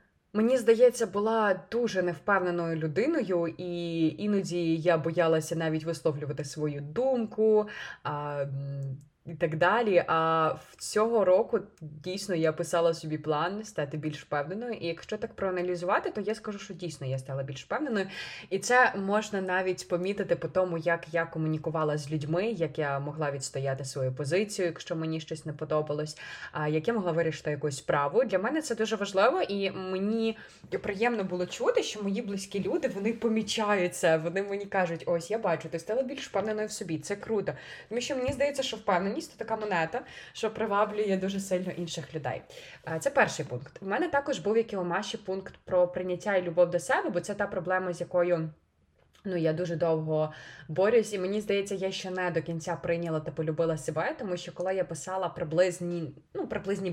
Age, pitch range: 20-39, 160-200 Hz